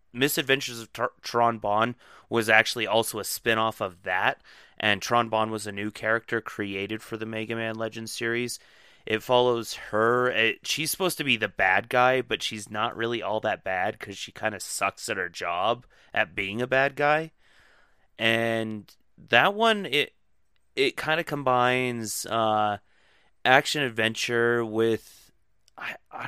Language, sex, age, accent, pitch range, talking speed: English, male, 30-49, American, 110-125 Hz, 165 wpm